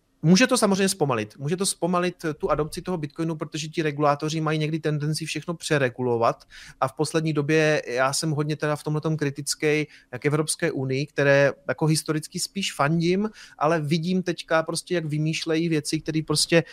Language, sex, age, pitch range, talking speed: Slovak, male, 30-49, 140-160 Hz, 170 wpm